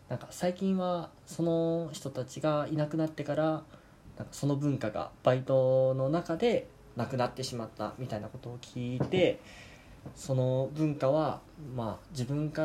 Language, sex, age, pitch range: Japanese, male, 20-39, 115-150 Hz